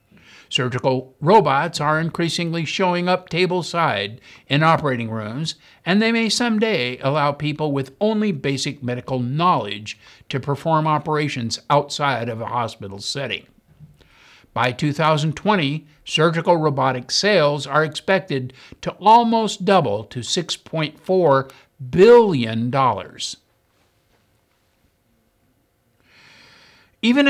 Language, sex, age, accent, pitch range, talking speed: English, male, 60-79, American, 130-180 Hz, 95 wpm